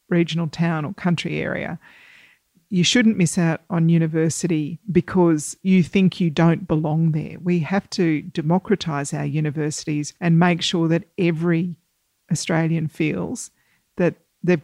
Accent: Australian